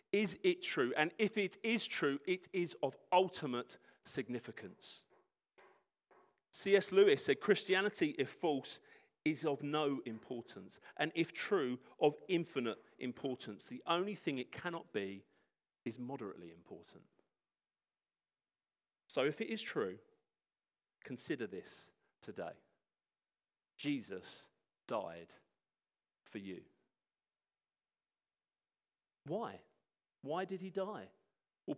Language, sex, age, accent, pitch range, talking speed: English, male, 40-59, British, 135-210 Hz, 105 wpm